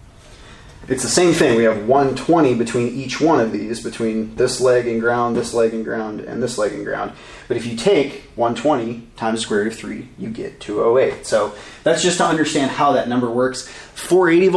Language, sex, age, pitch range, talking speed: English, male, 20-39, 110-135 Hz, 205 wpm